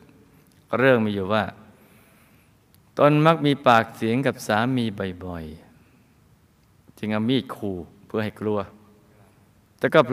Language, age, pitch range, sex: Thai, 20-39, 100-120 Hz, male